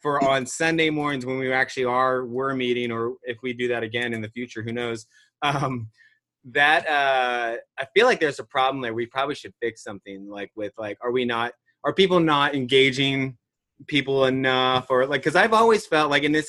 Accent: American